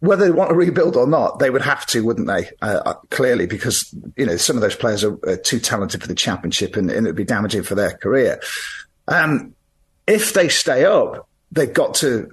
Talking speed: 220 wpm